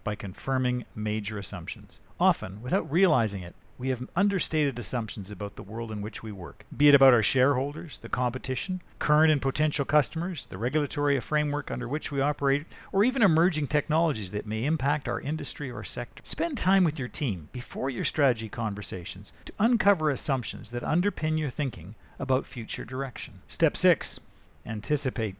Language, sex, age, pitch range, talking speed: English, male, 50-69, 110-145 Hz, 165 wpm